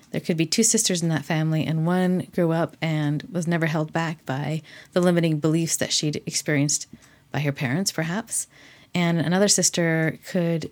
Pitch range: 150-175 Hz